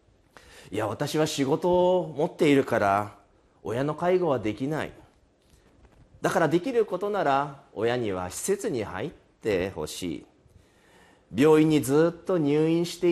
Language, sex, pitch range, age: Japanese, male, 105-170 Hz, 40-59